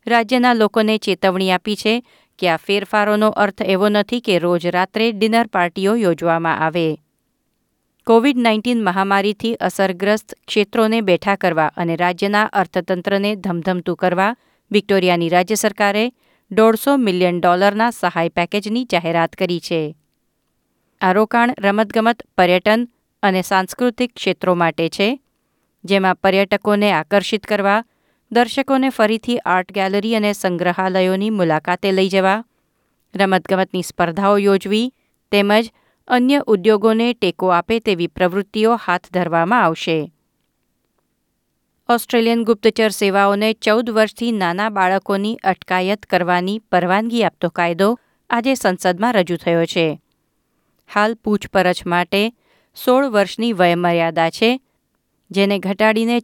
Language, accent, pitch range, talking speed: Gujarati, native, 180-220 Hz, 110 wpm